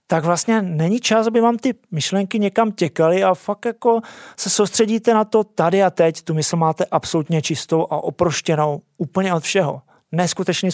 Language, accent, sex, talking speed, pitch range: Czech, native, male, 175 wpm, 155-195 Hz